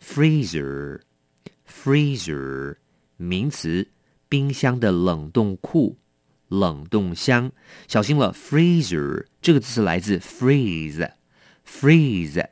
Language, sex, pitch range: English, male, 85-130 Hz